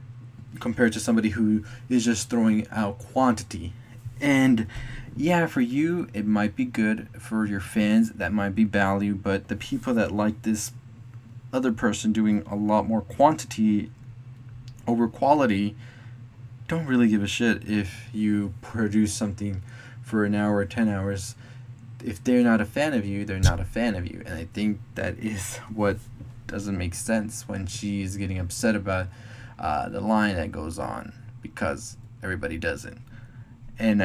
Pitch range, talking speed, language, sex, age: 100-120 Hz, 160 wpm, English, male, 20-39